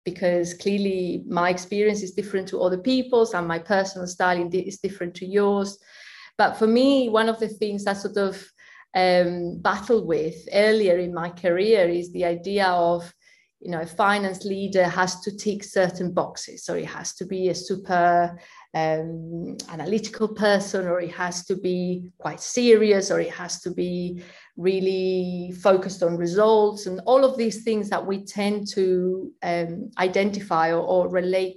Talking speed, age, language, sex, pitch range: 165 wpm, 30-49, English, female, 180-210 Hz